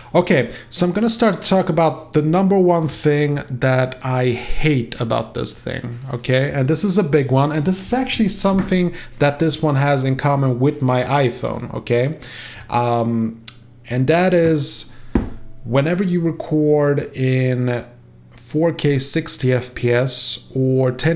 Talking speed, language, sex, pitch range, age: 145 wpm, English, male, 120-155 Hz, 30-49